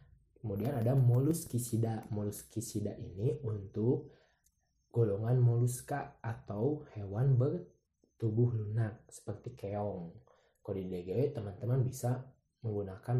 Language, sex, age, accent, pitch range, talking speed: Indonesian, male, 20-39, native, 105-130 Hz, 80 wpm